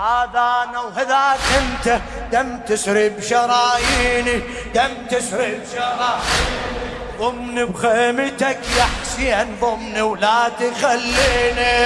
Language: Arabic